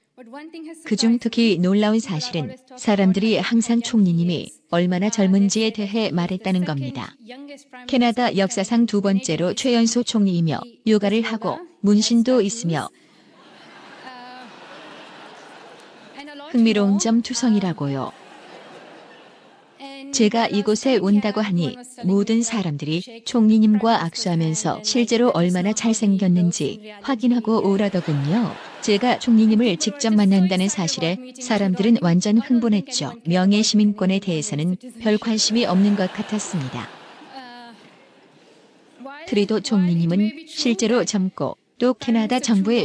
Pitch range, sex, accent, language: 190-235 Hz, female, native, Korean